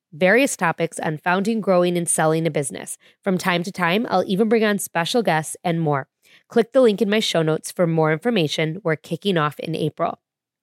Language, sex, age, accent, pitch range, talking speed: English, female, 20-39, American, 160-195 Hz, 205 wpm